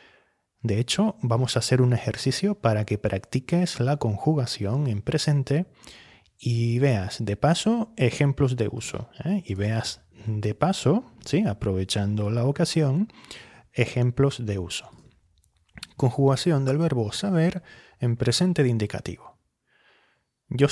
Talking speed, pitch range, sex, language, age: 115 wpm, 100-145 Hz, male, Spanish, 30-49